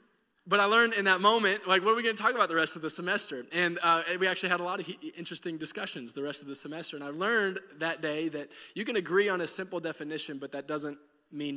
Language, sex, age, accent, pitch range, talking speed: English, male, 20-39, American, 145-170 Hz, 265 wpm